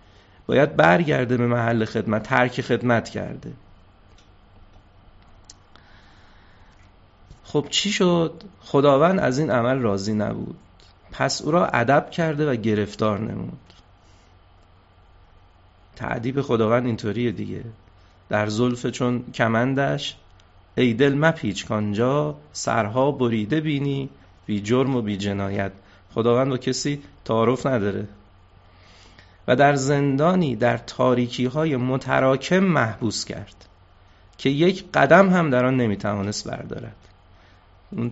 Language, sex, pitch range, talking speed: Persian, male, 100-130 Hz, 105 wpm